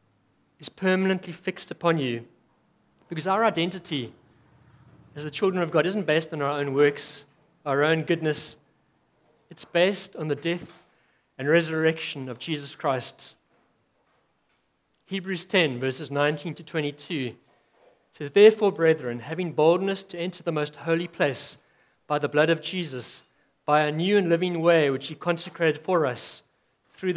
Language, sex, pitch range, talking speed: English, male, 150-185 Hz, 145 wpm